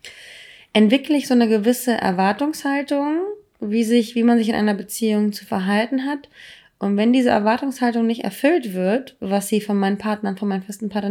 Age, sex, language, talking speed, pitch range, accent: 20-39, female, German, 175 wpm, 195-230 Hz, German